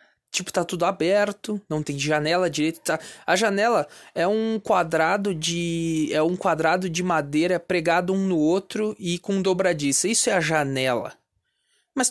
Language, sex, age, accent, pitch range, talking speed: Portuguese, male, 20-39, Brazilian, 155-205 Hz, 160 wpm